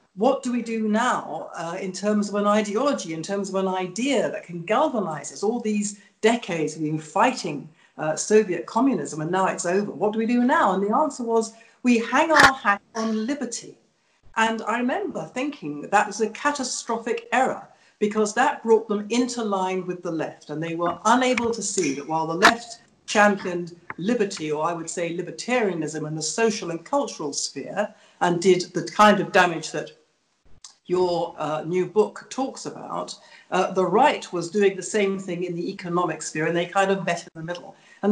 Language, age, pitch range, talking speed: English, 60-79, 170-225 Hz, 195 wpm